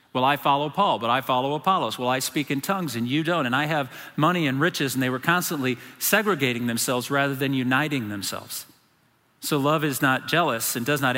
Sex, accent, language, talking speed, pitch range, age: male, American, English, 215 wpm, 125-150 Hz, 40-59